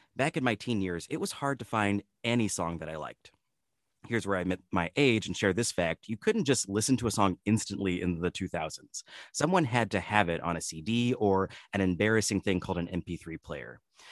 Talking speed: 220 wpm